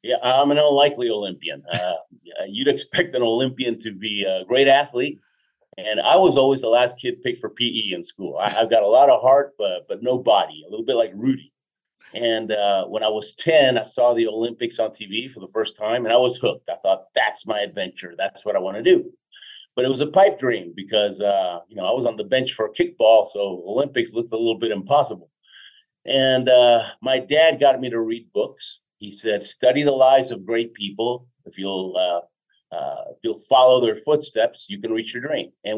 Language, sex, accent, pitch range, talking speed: English, male, American, 110-150 Hz, 220 wpm